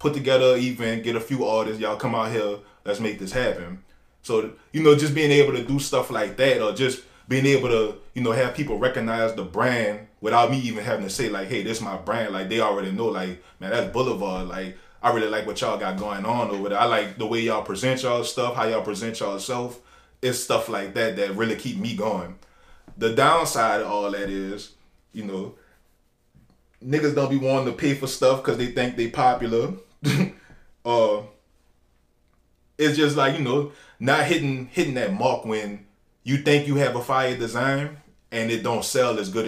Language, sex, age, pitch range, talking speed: English, male, 20-39, 100-135 Hz, 210 wpm